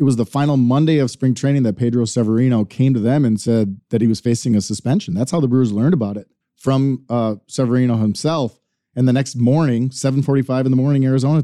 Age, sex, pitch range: 40-59, male, 110-140 Hz